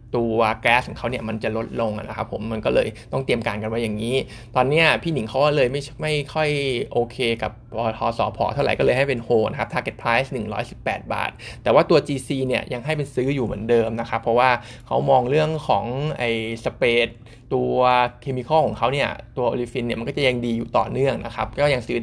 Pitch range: 115-140 Hz